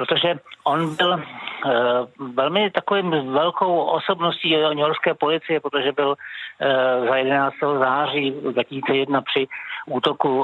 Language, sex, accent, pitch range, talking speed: Czech, male, native, 135-160 Hz, 120 wpm